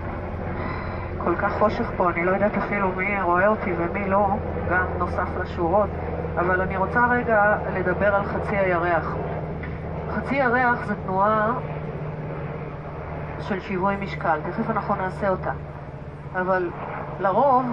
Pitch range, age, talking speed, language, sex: 175-210 Hz, 30-49, 125 wpm, Hebrew, female